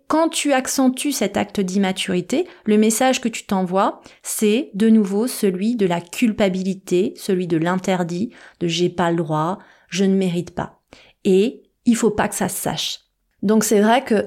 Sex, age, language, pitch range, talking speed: female, 30-49, French, 185-225 Hz, 175 wpm